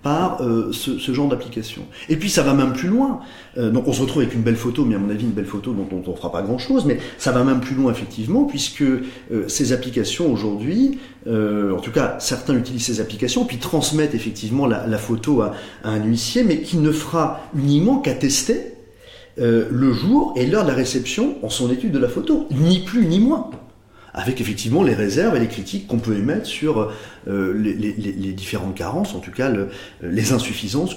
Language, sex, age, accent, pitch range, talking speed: French, male, 40-59, French, 110-145 Hz, 225 wpm